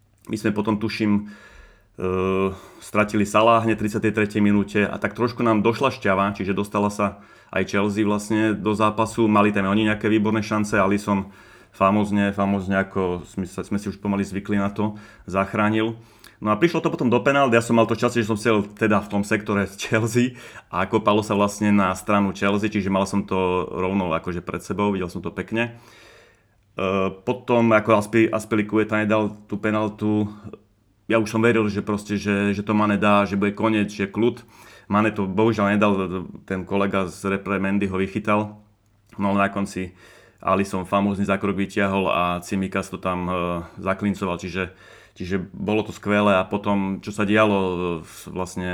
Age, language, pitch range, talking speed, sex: 30-49, Slovak, 100-110 Hz, 170 wpm, male